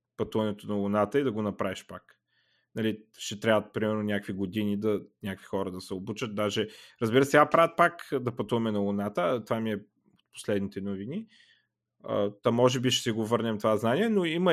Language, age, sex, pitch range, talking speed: Bulgarian, 30-49, male, 105-135 Hz, 190 wpm